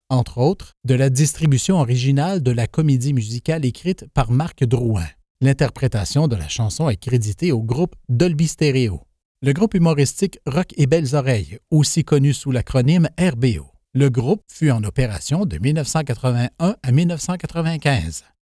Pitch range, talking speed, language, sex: 120-160 Hz, 145 wpm, French, male